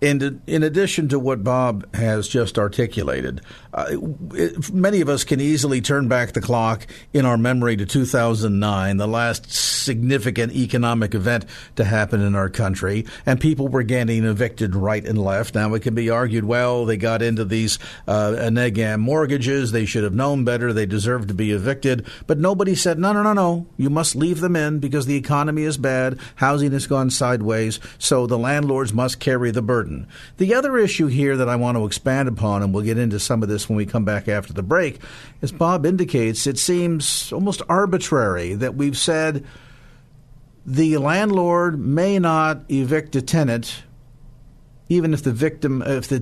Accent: American